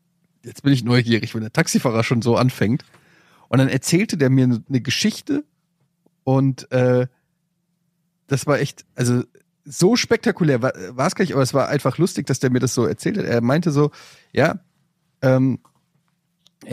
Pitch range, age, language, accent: 125-165 Hz, 30-49, German, German